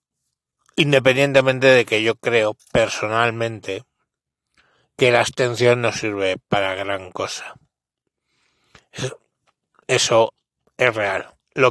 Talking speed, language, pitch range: 90 wpm, Spanish, 110-130 Hz